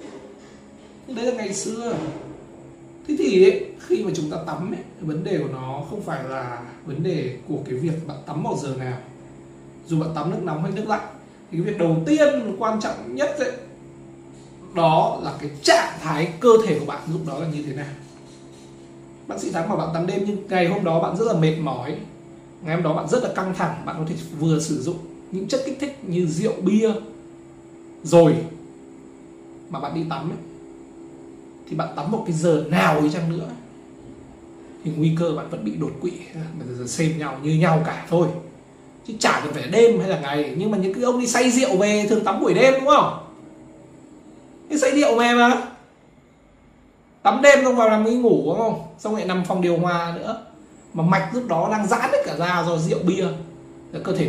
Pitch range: 135-205 Hz